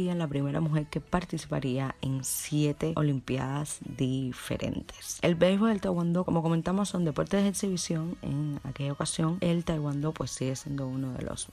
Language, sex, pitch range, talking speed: Spanish, female, 140-175 Hz, 160 wpm